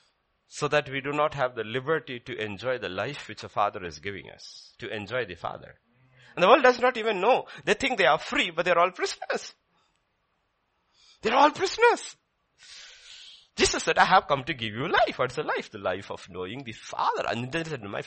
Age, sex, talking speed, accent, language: 50-69, male, 220 wpm, Indian, English